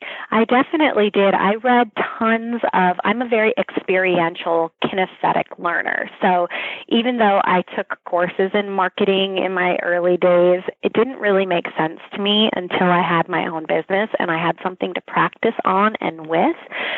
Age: 30-49